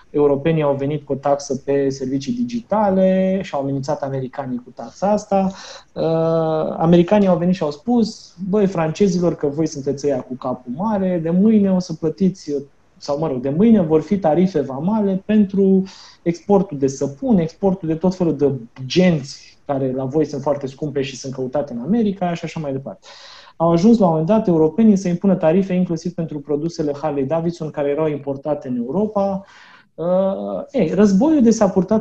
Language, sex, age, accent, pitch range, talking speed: Romanian, male, 30-49, native, 135-190 Hz, 180 wpm